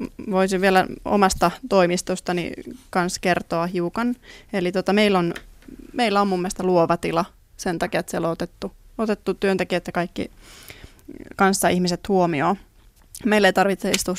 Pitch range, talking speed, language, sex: 175-195 Hz, 145 wpm, Finnish, female